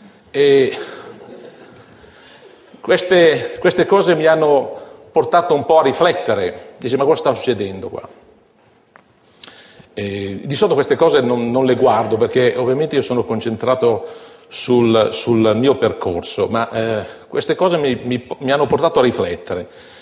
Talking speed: 140 wpm